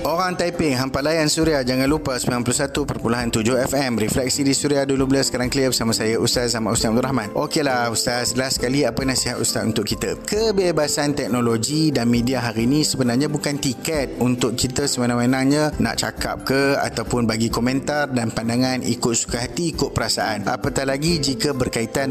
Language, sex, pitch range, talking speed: Malay, male, 120-155 Hz, 165 wpm